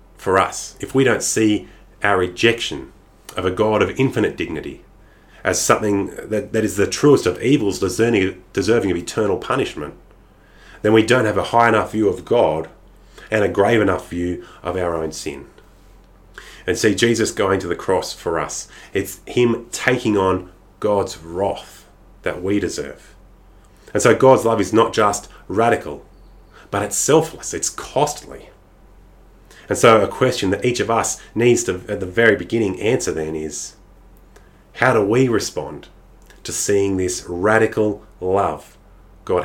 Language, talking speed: English, 160 wpm